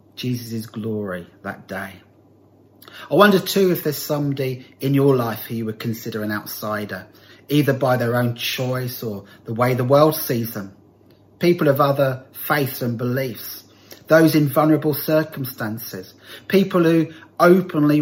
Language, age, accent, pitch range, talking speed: English, 30-49, British, 105-140 Hz, 145 wpm